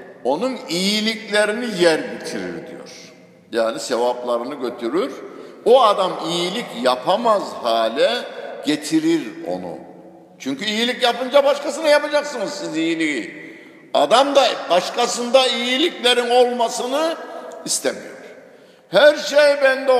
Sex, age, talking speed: male, 60-79, 95 wpm